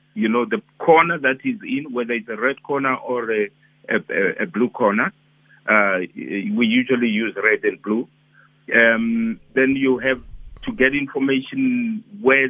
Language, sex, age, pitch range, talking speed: English, male, 50-69, 125-165 Hz, 160 wpm